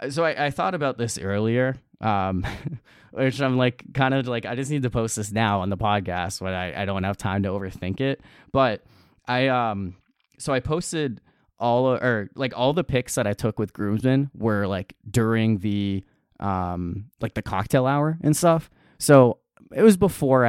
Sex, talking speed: male, 195 wpm